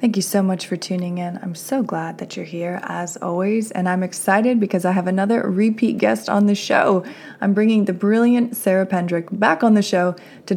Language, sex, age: English, female, 20-39